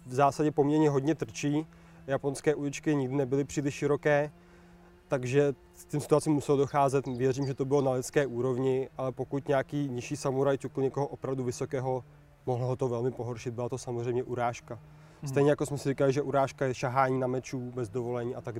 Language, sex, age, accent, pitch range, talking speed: Czech, male, 20-39, native, 125-145 Hz, 185 wpm